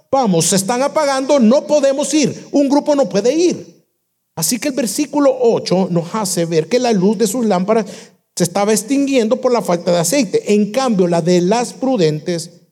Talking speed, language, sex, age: 190 wpm, Spanish, male, 50-69